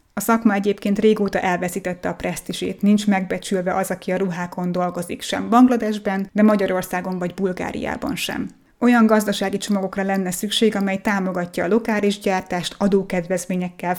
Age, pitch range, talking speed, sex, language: 20-39, 185-210 Hz, 135 wpm, female, Hungarian